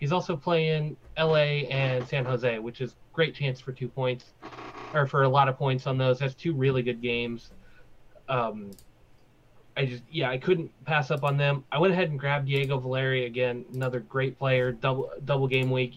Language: English